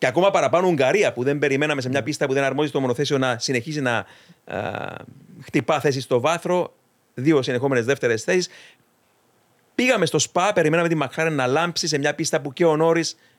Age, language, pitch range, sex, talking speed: 40-59, Greek, 120-155 Hz, male, 190 wpm